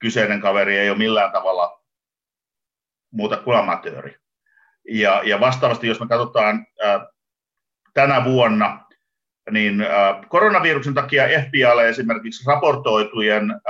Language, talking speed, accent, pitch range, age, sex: Finnish, 95 wpm, native, 115-155 Hz, 50-69, male